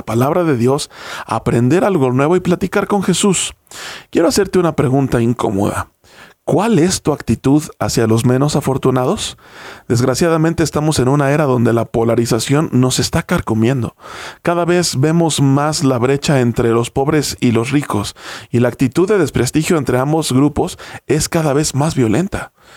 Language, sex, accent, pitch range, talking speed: Spanish, male, Mexican, 125-165 Hz, 155 wpm